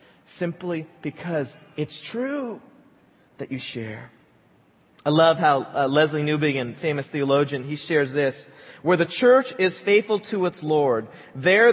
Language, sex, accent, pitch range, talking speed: English, male, American, 150-230 Hz, 140 wpm